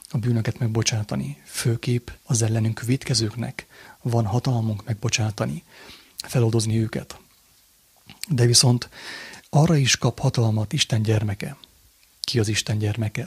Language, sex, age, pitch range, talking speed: English, male, 30-49, 110-130 Hz, 110 wpm